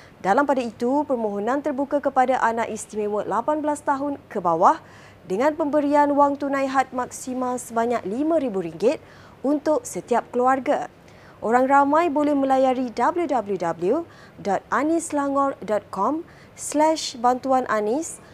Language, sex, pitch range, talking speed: Malay, female, 220-290 Hz, 100 wpm